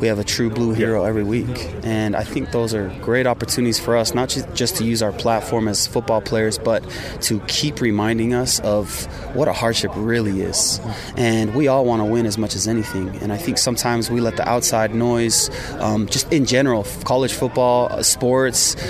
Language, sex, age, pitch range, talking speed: English, male, 20-39, 110-125 Hz, 200 wpm